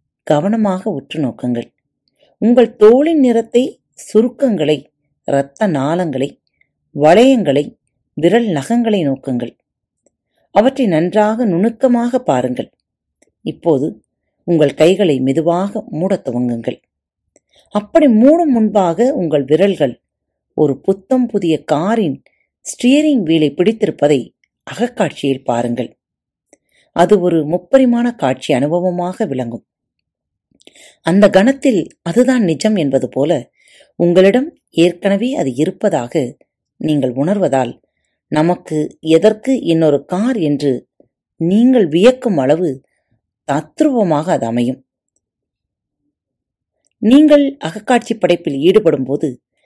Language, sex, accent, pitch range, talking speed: Tamil, female, native, 145-240 Hz, 85 wpm